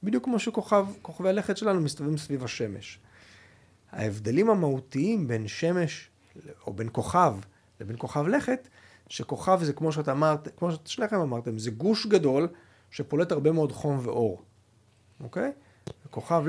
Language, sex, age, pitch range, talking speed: Hebrew, male, 40-59, 110-170 Hz, 135 wpm